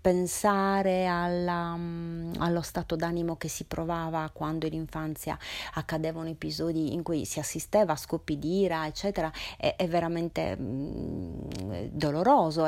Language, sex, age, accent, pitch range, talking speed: Italian, female, 30-49, native, 160-185 Hz, 125 wpm